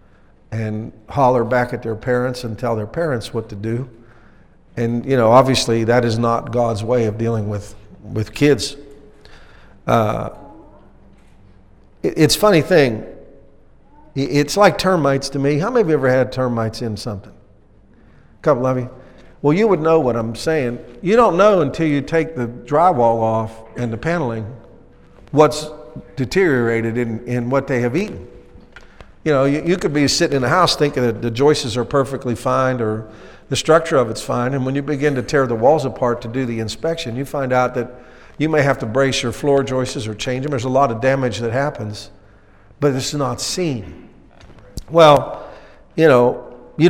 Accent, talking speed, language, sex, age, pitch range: American, 185 wpm, English, male, 50-69, 115-145 Hz